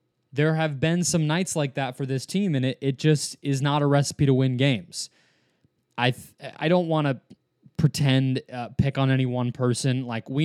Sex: male